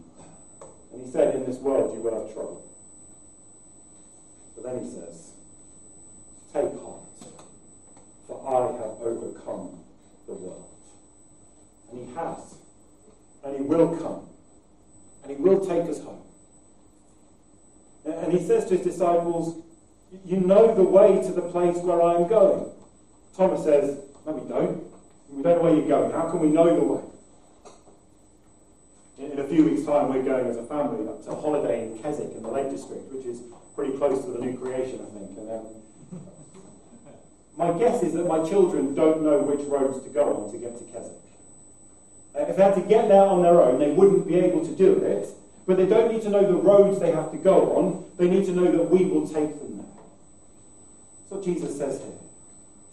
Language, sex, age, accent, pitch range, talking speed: English, male, 40-59, British, 140-195 Hz, 185 wpm